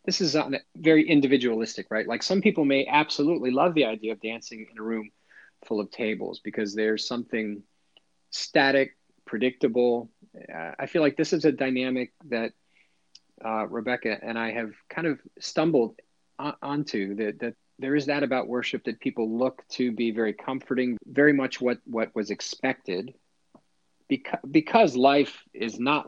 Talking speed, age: 160 wpm, 40-59